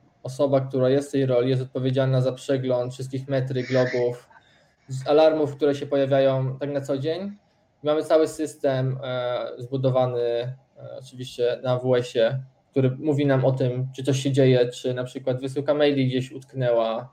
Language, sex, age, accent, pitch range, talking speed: Polish, male, 20-39, native, 130-145 Hz, 160 wpm